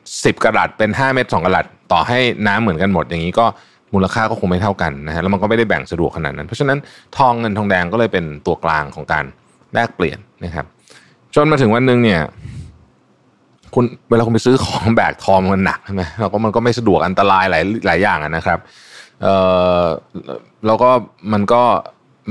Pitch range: 90-110 Hz